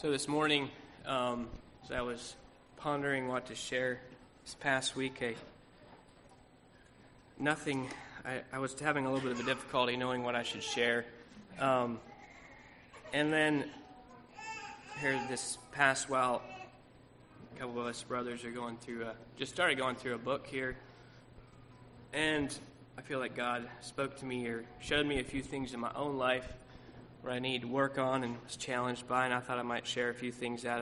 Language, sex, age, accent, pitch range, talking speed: English, male, 20-39, American, 120-135 Hz, 180 wpm